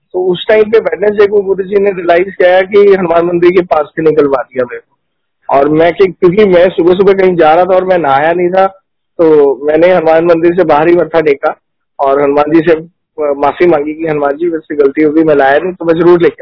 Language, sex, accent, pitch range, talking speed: Hindi, male, native, 145-180 Hz, 230 wpm